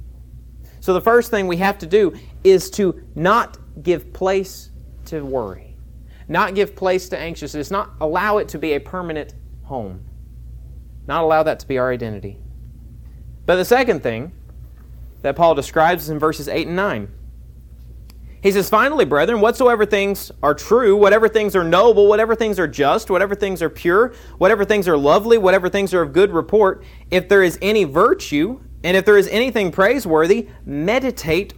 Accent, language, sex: American, English, male